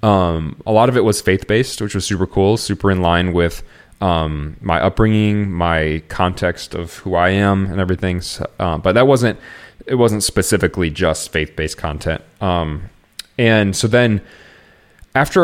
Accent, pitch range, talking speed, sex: American, 85-110 Hz, 165 wpm, male